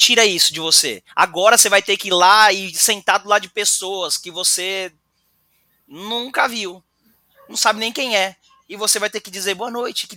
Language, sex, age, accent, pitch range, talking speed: Portuguese, male, 20-39, Brazilian, 185-230 Hz, 200 wpm